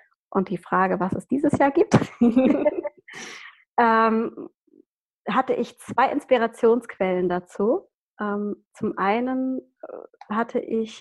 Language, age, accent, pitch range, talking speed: German, 20-39, German, 200-250 Hz, 105 wpm